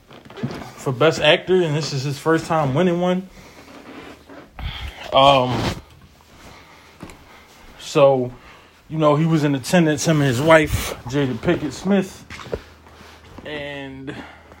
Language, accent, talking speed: English, American, 110 wpm